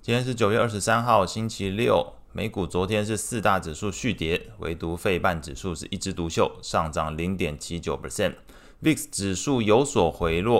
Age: 20-39